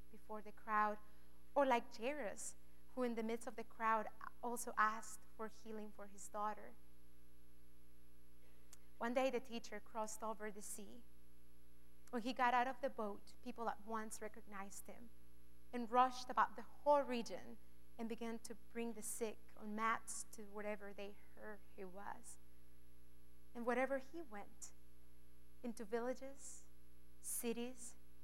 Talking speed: 140 wpm